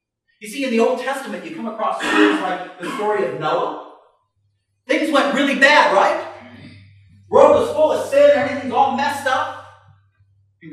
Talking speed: 175 wpm